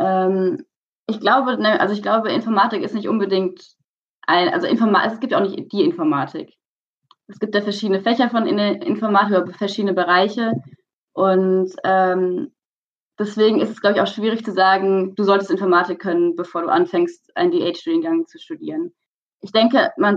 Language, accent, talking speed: German, German, 150 wpm